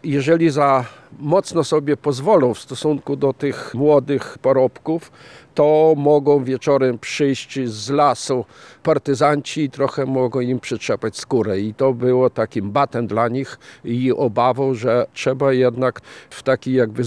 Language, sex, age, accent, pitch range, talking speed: Polish, male, 50-69, native, 125-150 Hz, 135 wpm